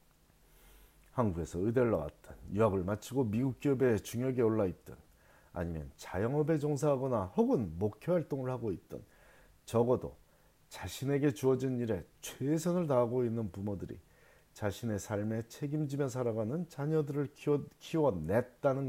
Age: 40-59